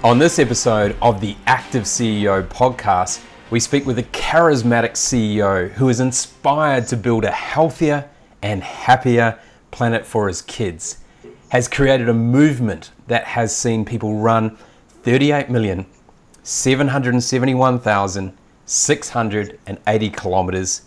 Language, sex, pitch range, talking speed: English, male, 105-130 Hz, 110 wpm